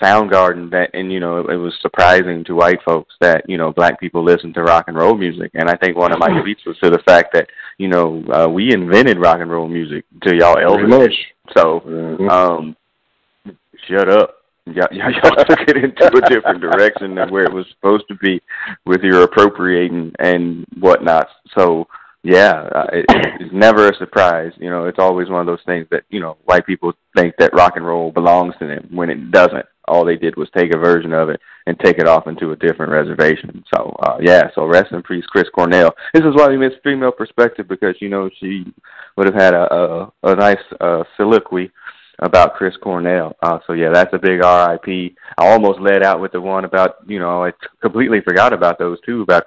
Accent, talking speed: American, 210 wpm